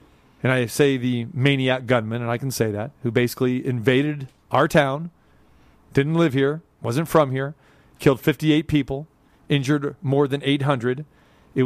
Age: 40-59